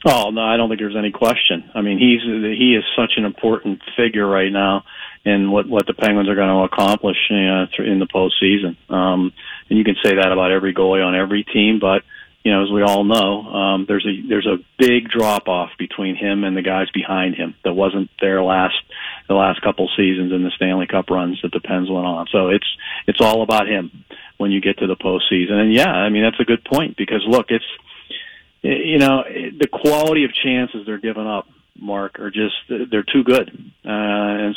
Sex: male